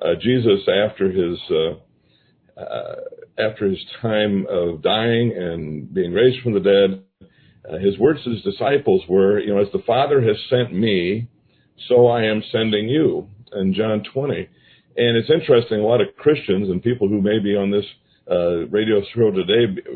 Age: 50-69